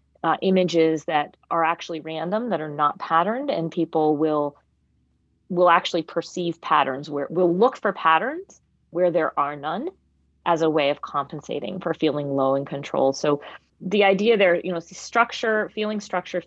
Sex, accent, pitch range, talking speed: female, American, 150-180 Hz, 170 wpm